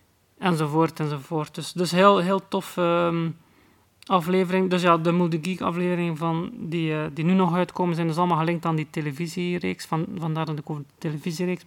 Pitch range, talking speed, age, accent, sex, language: 155-175 Hz, 185 wpm, 30-49, Dutch, male, Dutch